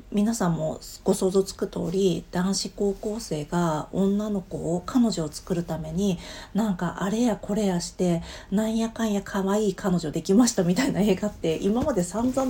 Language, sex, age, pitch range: Japanese, female, 40-59, 170-245 Hz